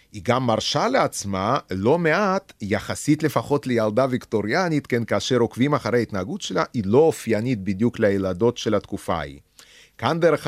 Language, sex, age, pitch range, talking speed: Hebrew, male, 30-49, 100-140 Hz, 150 wpm